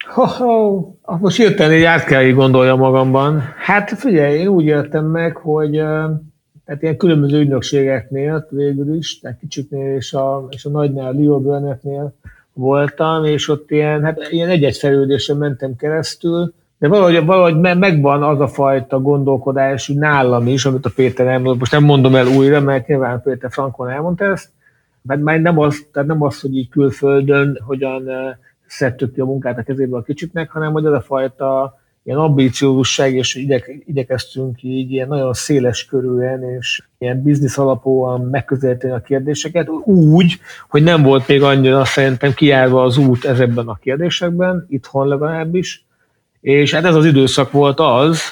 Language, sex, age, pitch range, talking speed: Hungarian, male, 60-79, 130-155 Hz, 155 wpm